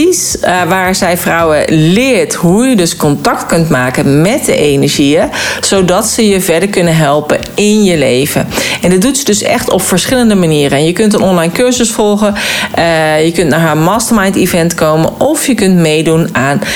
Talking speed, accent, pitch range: 185 wpm, Dutch, 160-215 Hz